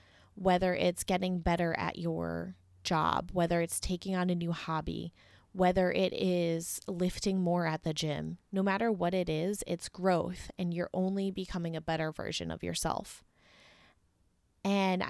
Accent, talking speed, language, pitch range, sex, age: American, 155 wpm, English, 155-190 Hz, female, 20-39